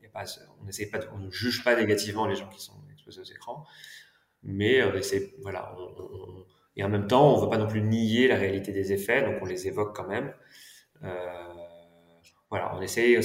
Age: 30-49